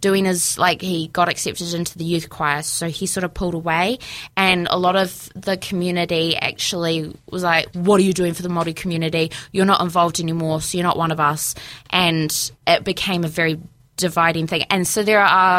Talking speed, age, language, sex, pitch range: 210 wpm, 20-39, English, female, 165-190 Hz